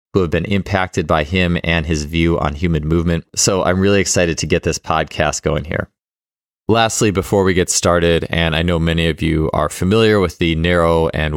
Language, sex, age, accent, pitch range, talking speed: English, male, 20-39, American, 80-90 Hz, 205 wpm